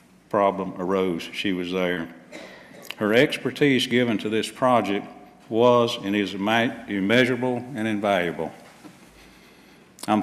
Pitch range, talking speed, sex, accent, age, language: 105-125 Hz, 105 wpm, male, American, 50-69, English